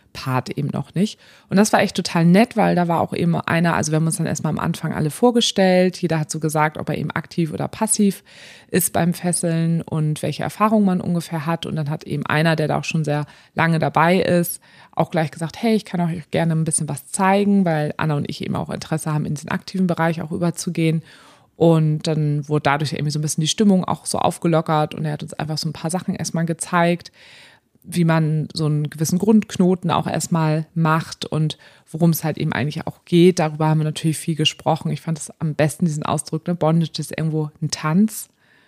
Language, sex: German, female